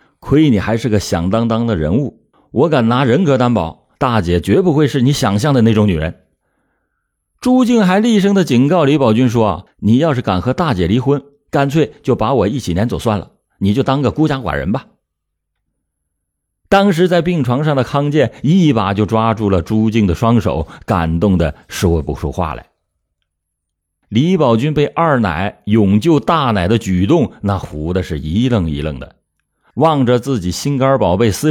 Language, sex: Chinese, male